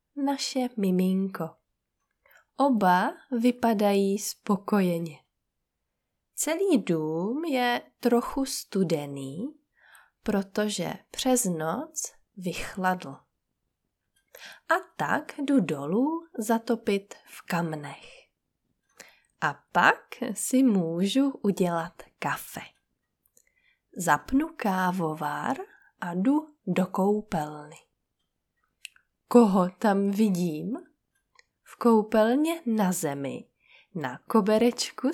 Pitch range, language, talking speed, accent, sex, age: 175-260 Hz, Czech, 70 wpm, native, female, 20-39